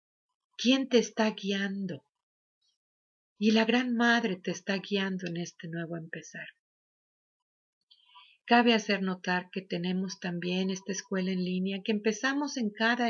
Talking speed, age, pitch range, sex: 135 wpm, 40-59, 190-230 Hz, female